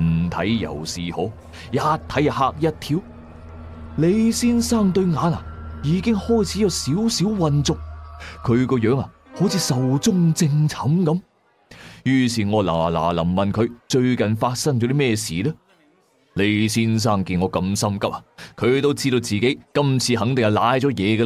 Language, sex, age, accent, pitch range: Chinese, male, 30-49, native, 110-170 Hz